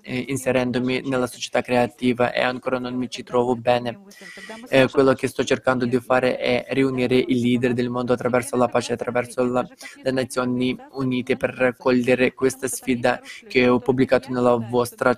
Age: 20-39